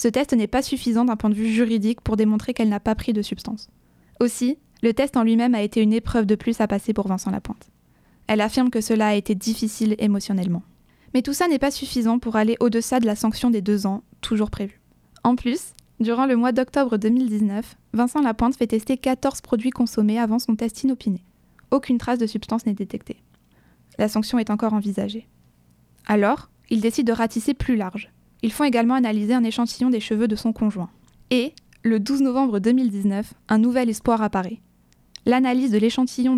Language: French